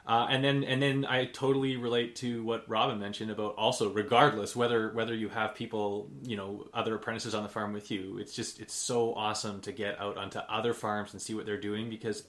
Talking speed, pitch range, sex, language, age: 225 wpm, 105-120 Hz, male, English, 20-39